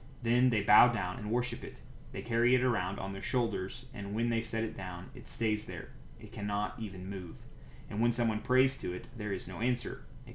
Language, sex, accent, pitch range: English, male, American, 100-120 Hz